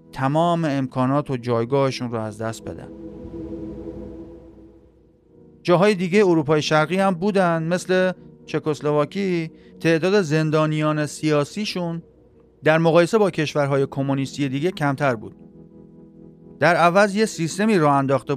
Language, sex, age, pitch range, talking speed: Persian, male, 40-59, 135-170 Hz, 110 wpm